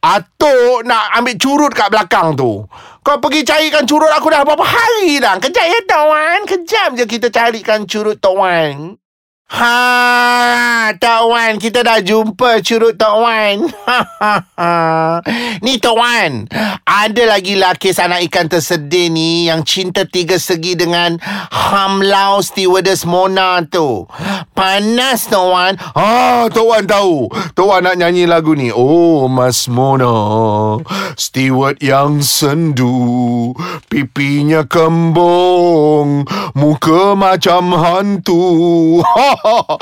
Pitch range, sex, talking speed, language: 170-220 Hz, male, 115 wpm, Malay